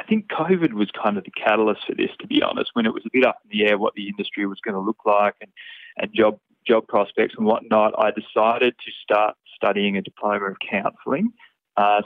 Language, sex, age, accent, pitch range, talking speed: English, male, 20-39, Australian, 100-120 Hz, 235 wpm